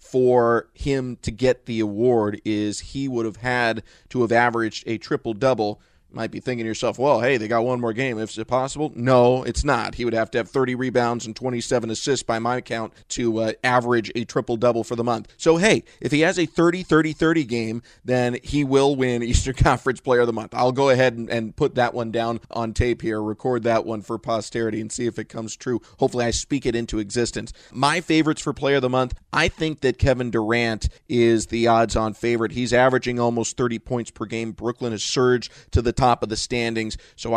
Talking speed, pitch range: 220 wpm, 115-130 Hz